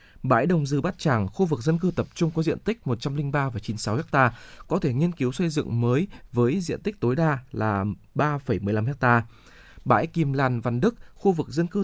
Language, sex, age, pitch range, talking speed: Vietnamese, male, 20-39, 120-160 Hz, 205 wpm